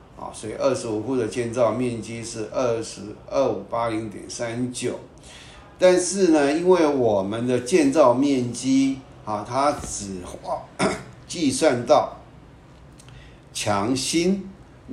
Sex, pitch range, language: male, 110-135 Hz, Chinese